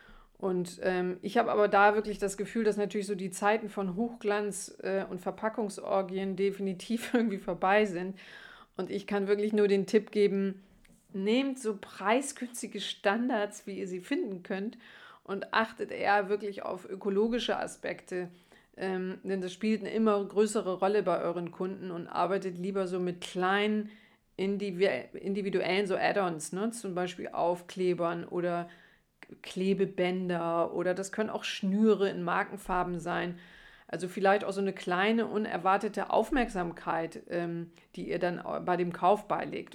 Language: German